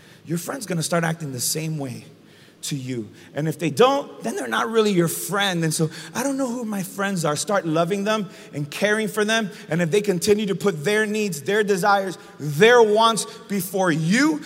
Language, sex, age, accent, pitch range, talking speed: English, male, 30-49, American, 180-255 Hz, 210 wpm